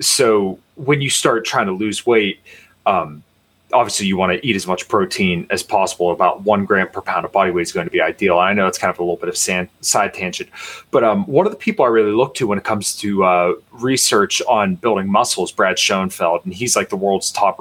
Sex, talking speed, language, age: male, 250 wpm, English, 20-39